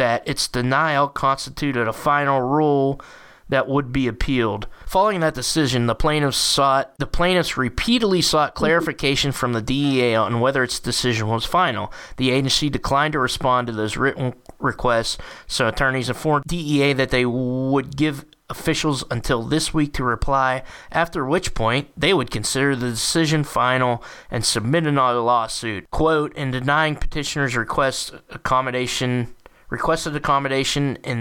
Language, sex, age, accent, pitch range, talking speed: English, male, 20-39, American, 120-145 Hz, 145 wpm